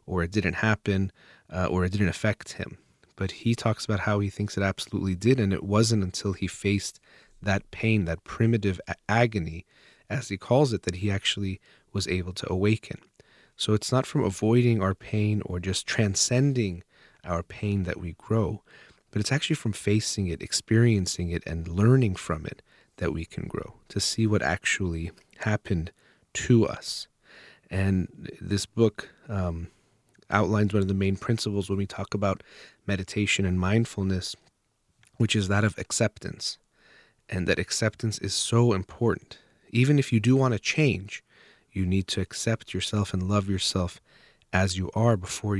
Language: English